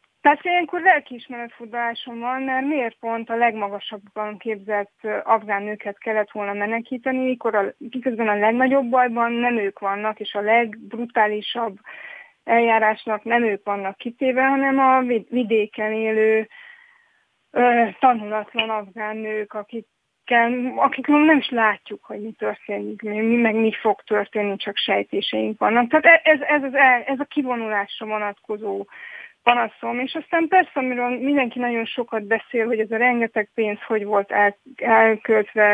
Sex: female